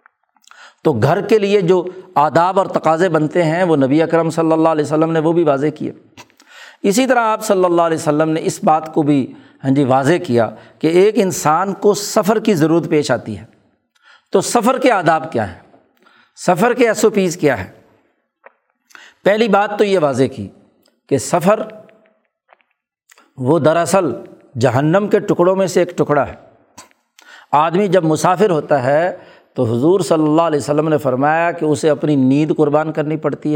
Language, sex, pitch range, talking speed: Urdu, male, 145-190 Hz, 175 wpm